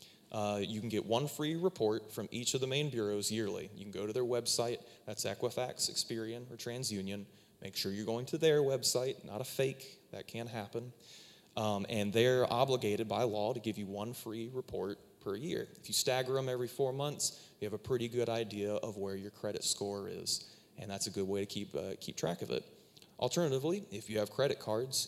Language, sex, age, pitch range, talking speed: English, male, 20-39, 105-130 Hz, 215 wpm